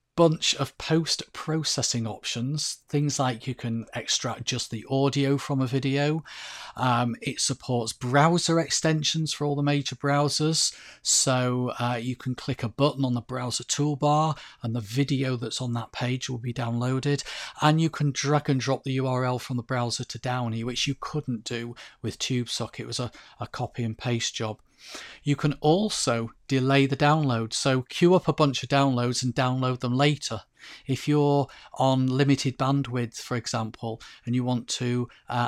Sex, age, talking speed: male, 40-59, 170 wpm